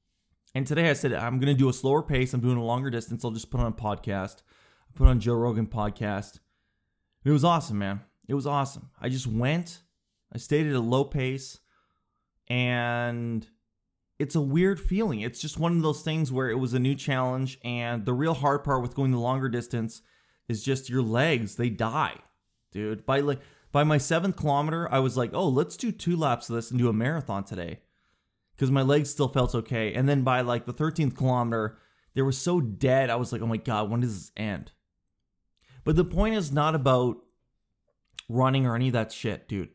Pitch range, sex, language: 115-145 Hz, male, English